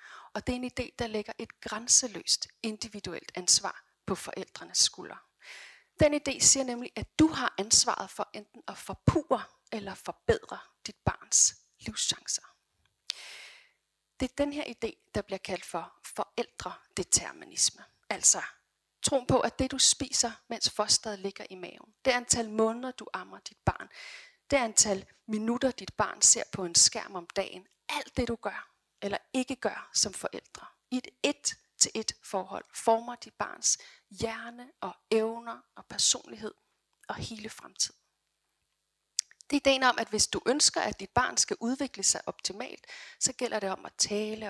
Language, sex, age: Danish, female, 30-49